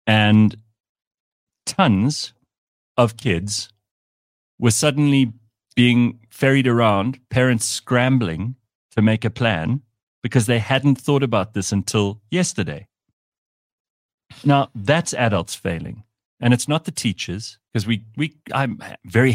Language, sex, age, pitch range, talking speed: English, male, 40-59, 90-125 Hz, 115 wpm